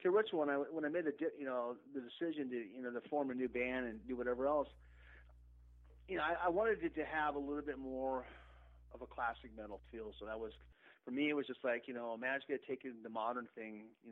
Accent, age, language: American, 40-59, English